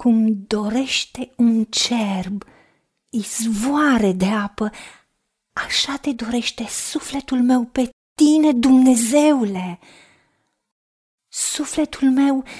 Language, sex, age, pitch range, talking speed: Romanian, female, 30-49, 215-295 Hz, 80 wpm